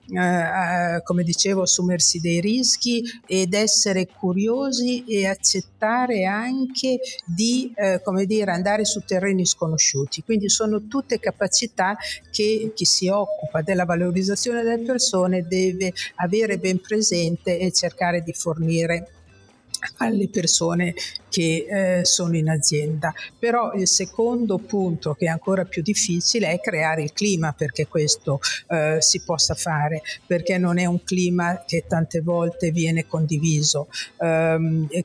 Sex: female